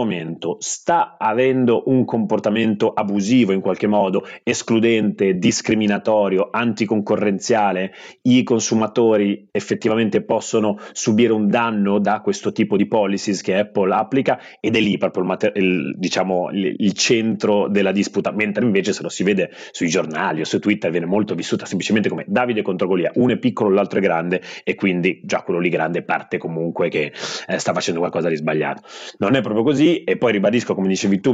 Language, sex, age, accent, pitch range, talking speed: Italian, male, 30-49, native, 95-110 Hz, 165 wpm